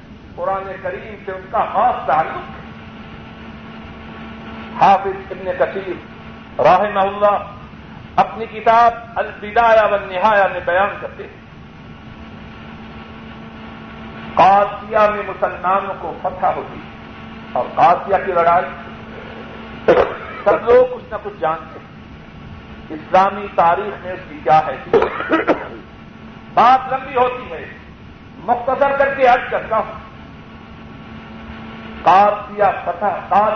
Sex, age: male, 50-69